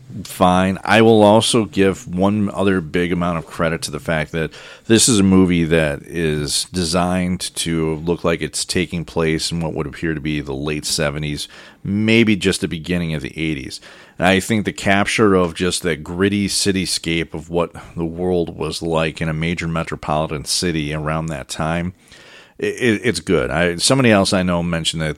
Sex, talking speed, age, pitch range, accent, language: male, 180 wpm, 40-59, 80-95 Hz, American, English